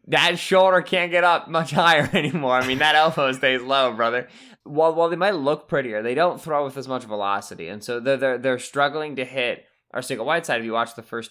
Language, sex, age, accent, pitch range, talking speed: English, male, 20-39, American, 115-145 Hz, 240 wpm